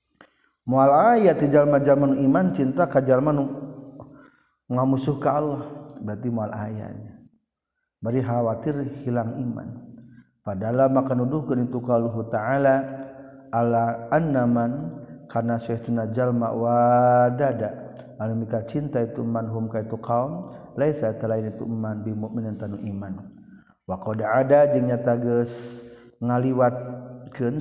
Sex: male